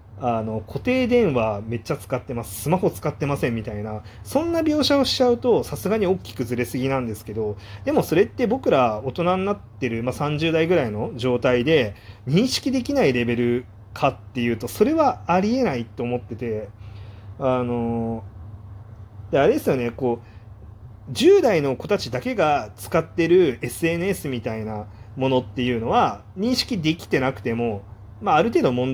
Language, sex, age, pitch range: Japanese, male, 30-49, 105-155 Hz